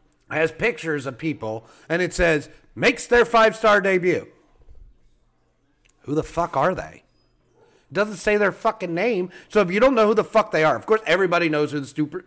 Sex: male